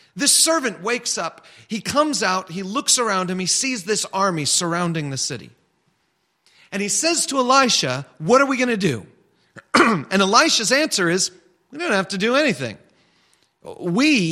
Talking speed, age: 170 wpm, 40-59